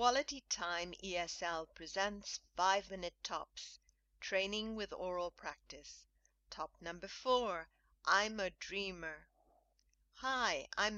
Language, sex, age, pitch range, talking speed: English, female, 50-69, 170-210 Hz, 100 wpm